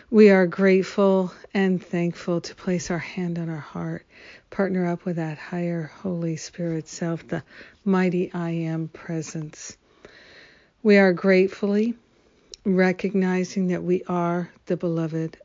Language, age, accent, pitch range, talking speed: English, 50-69, American, 165-190 Hz, 130 wpm